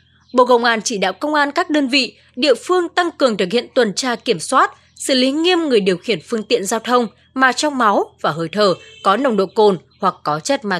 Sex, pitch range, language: female, 220-290 Hz, Vietnamese